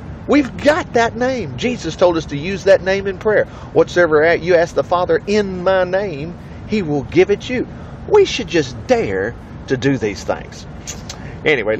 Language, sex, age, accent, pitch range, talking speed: English, male, 40-59, American, 135-210 Hz, 180 wpm